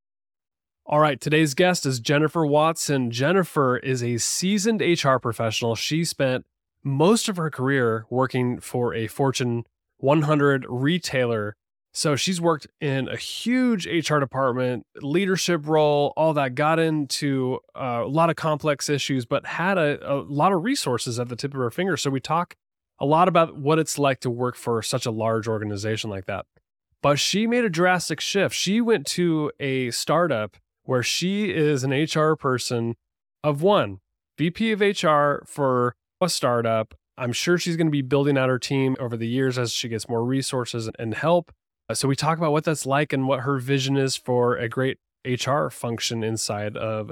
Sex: male